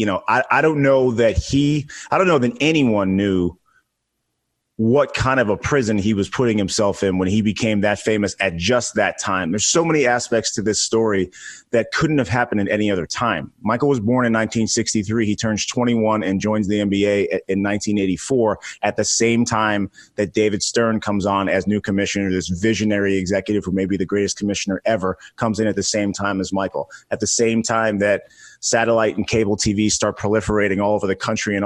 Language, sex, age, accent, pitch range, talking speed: English, male, 30-49, American, 100-115 Hz, 205 wpm